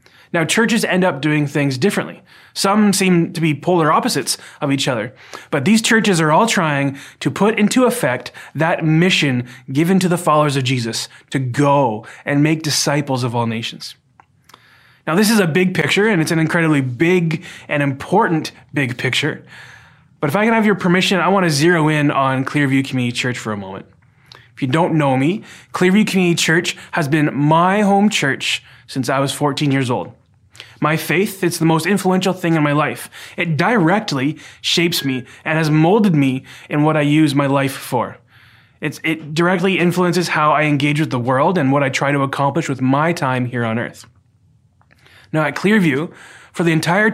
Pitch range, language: 135-175 Hz, English